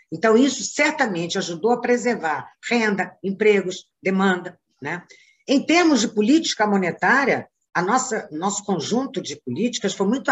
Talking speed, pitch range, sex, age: 130 wpm, 180-240 Hz, female, 50-69